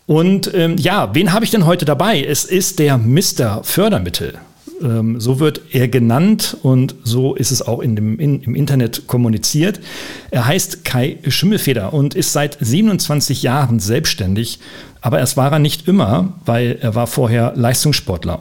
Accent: German